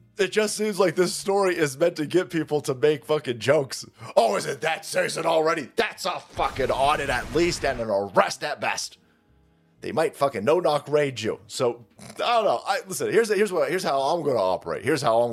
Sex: male